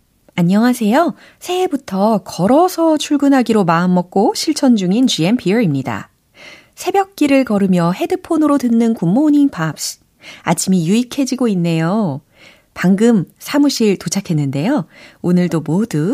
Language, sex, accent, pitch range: Korean, female, native, 160-265 Hz